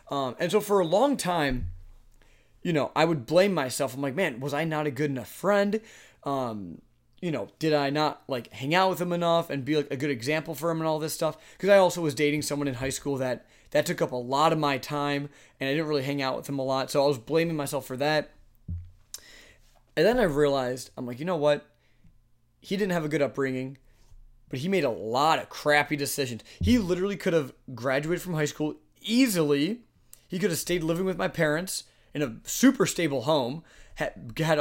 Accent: American